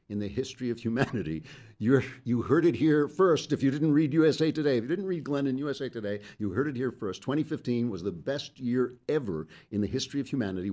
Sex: male